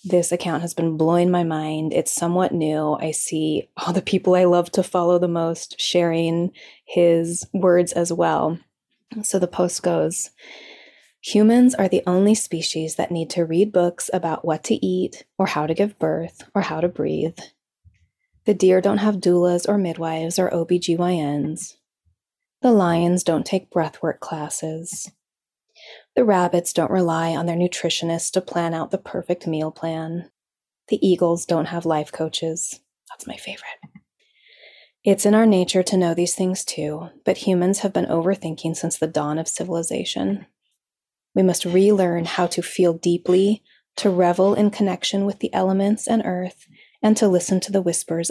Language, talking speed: English, 165 wpm